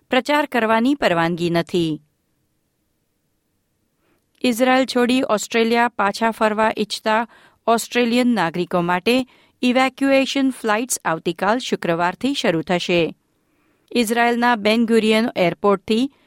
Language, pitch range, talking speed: Gujarati, 180-245 Hz, 80 wpm